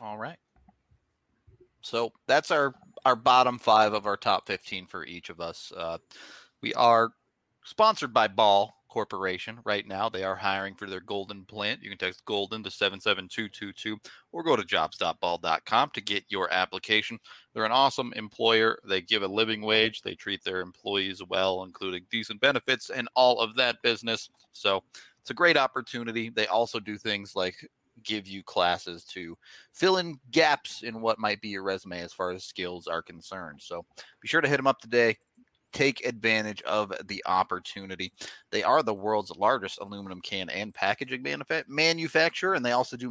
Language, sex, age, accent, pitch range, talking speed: English, male, 30-49, American, 95-120 Hz, 175 wpm